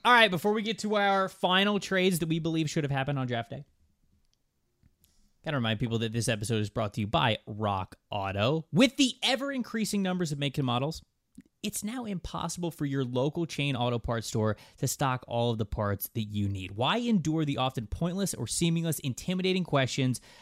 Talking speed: 200 wpm